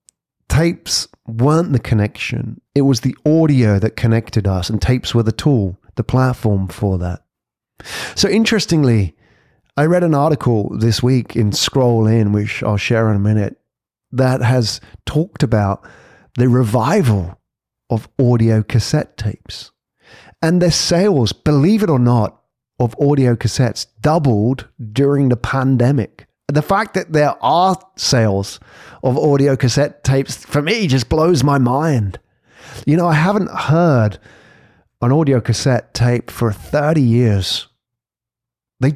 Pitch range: 110-140 Hz